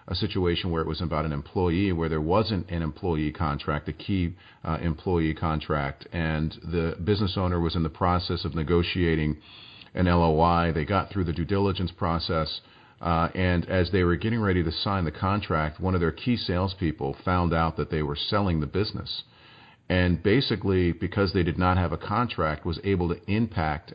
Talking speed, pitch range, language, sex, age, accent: 190 wpm, 80-95 Hz, English, male, 40-59, American